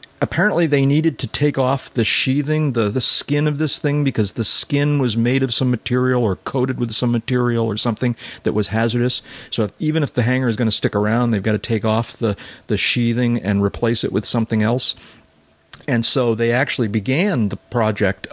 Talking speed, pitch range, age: 210 wpm, 100-125 Hz, 40-59